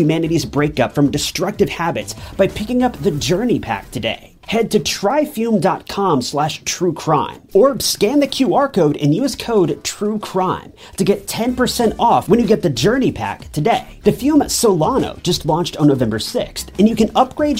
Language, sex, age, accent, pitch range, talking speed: English, male, 30-49, American, 150-225 Hz, 165 wpm